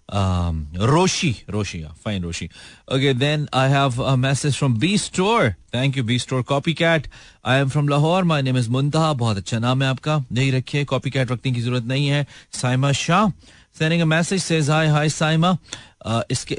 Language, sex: Hindi, male